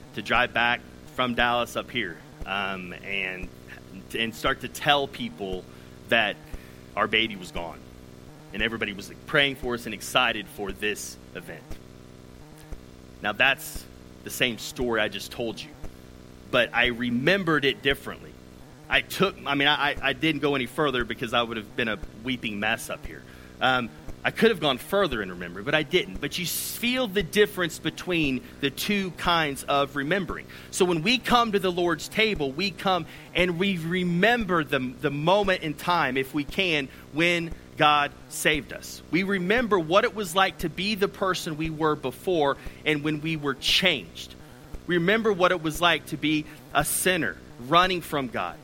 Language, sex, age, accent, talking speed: English, male, 30-49, American, 175 wpm